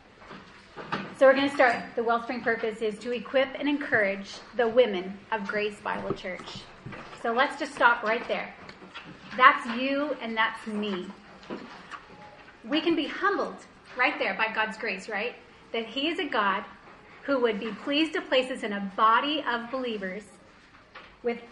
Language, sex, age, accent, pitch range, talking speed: English, female, 30-49, American, 210-255 Hz, 160 wpm